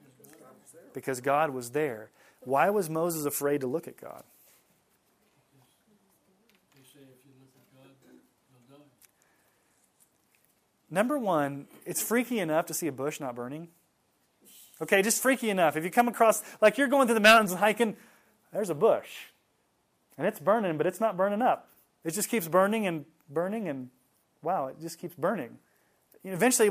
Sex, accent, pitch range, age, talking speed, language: male, American, 145-225 Hz, 30-49, 140 wpm, English